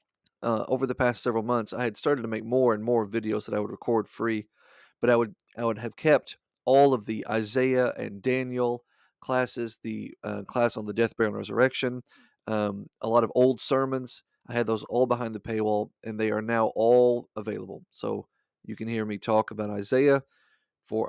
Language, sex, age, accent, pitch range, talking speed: English, male, 40-59, American, 110-125 Hz, 200 wpm